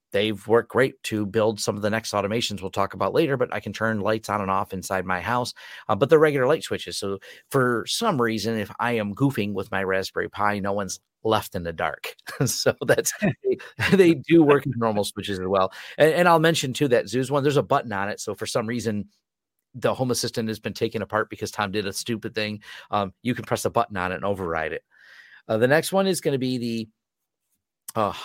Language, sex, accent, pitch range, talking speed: English, male, American, 100-135 Hz, 235 wpm